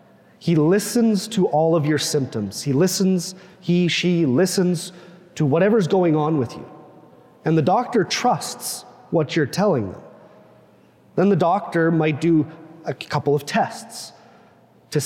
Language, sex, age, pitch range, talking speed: English, male, 30-49, 145-175 Hz, 145 wpm